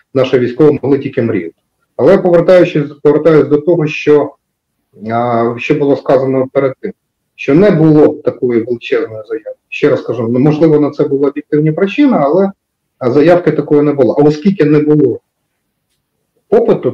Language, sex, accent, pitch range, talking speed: Ukrainian, male, native, 130-175 Hz, 145 wpm